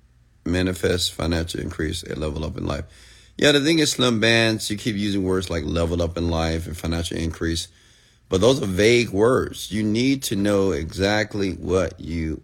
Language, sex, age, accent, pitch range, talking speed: English, male, 30-49, American, 85-110 Hz, 185 wpm